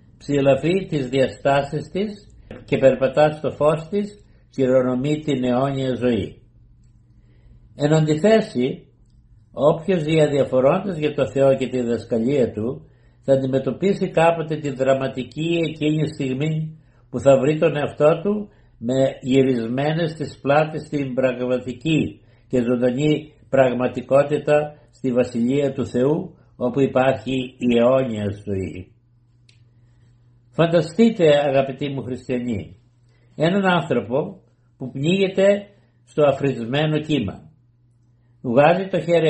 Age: 60-79